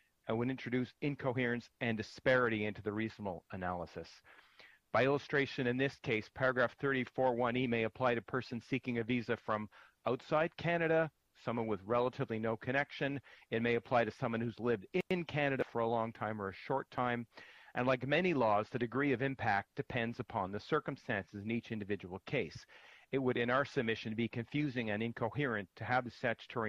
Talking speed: 175 wpm